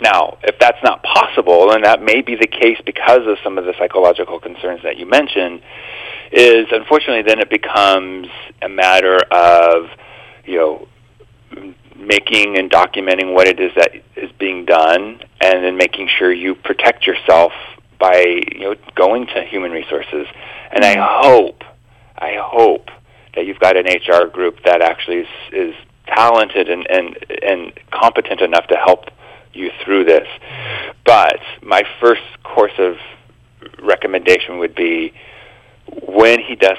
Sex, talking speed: male, 150 wpm